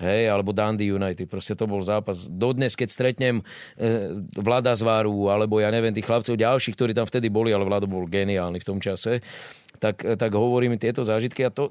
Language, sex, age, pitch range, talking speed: Slovak, male, 30-49, 110-140 Hz, 195 wpm